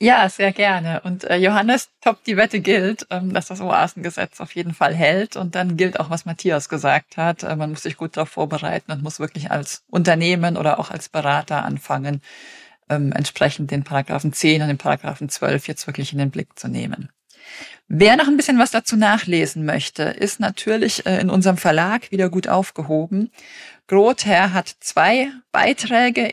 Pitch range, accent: 155-200 Hz, German